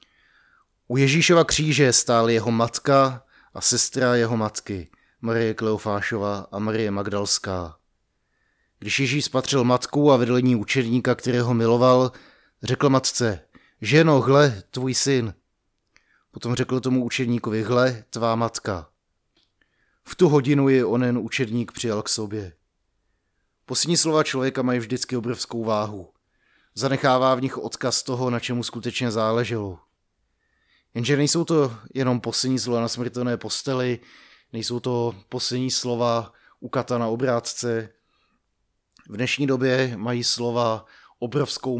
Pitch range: 110-130 Hz